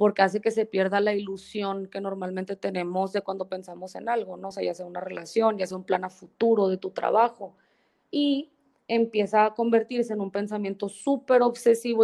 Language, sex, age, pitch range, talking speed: Spanish, female, 20-39, 195-230 Hz, 200 wpm